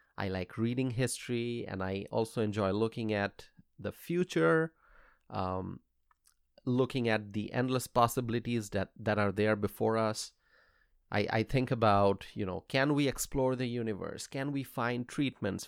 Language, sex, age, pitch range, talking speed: English, male, 30-49, 100-130 Hz, 150 wpm